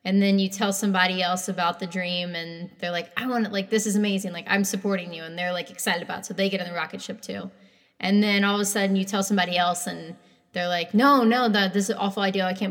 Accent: American